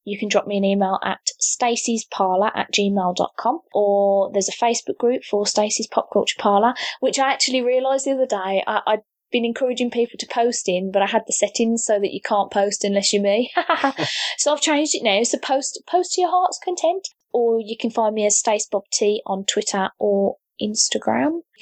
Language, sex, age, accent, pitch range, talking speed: English, female, 20-39, British, 205-255 Hz, 195 wpm